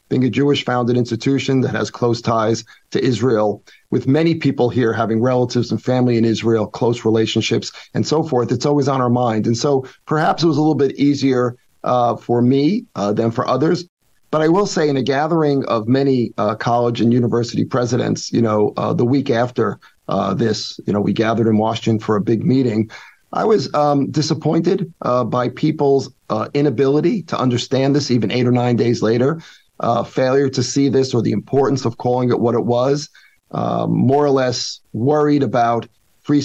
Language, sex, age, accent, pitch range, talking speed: English, male, 40-59, American, 115-140 Hz, 195 wpm